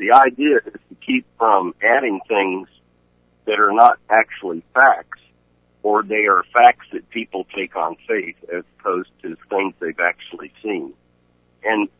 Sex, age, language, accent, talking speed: male, 60-79, English, American, 150 wpm